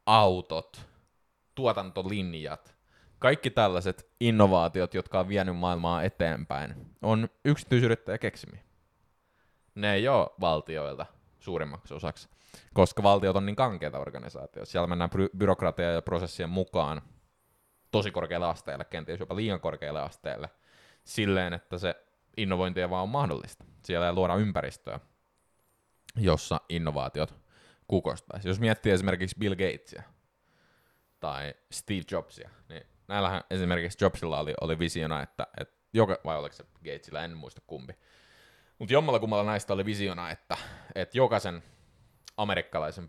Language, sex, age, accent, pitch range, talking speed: Finnish, male, 20-39, native, 85-100 Hz, 125 wpm